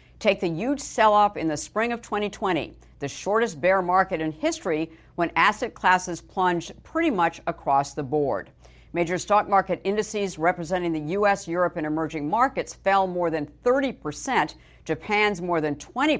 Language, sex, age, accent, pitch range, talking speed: English, female, 60-79, American, 160-205 Hz, 165 wpm